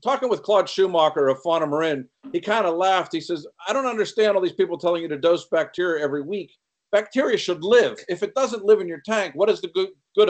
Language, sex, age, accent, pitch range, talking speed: English, male, 50-69, American, 150-205 Hz, 240 wpm